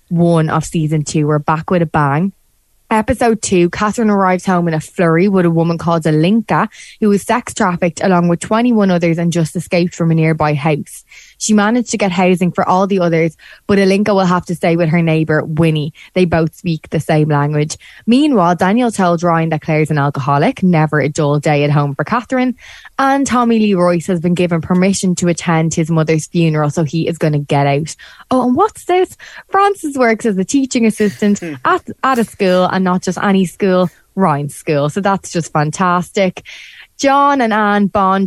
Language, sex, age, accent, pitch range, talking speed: English, female, 20-39, Irish, 160-200 Hz, 200 wpm